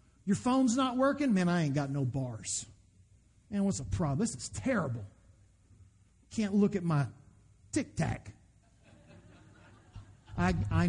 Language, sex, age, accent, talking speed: English, male, 50-69, American, 130 wpm